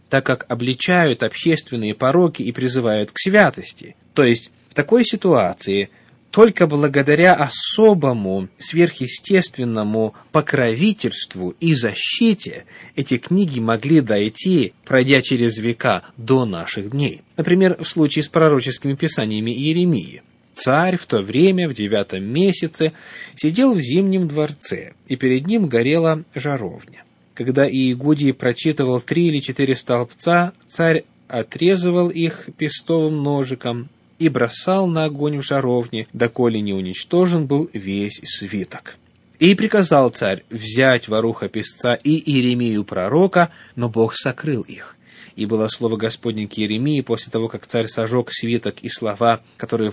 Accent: native